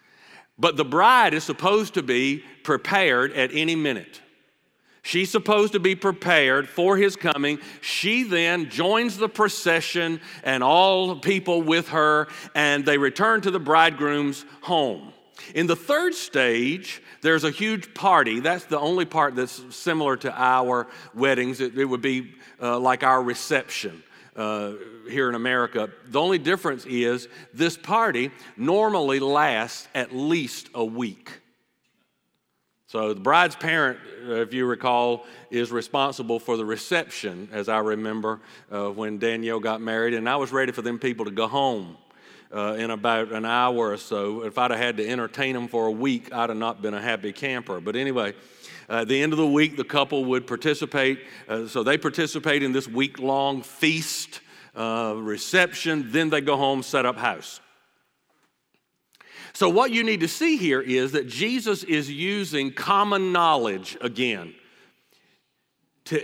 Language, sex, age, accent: English, male, 50-69, American